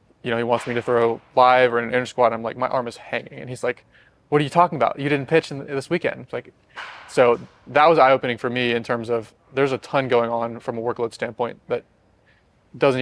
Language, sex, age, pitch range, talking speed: English, male, 20-39, 115-125 Hz, 255 wpm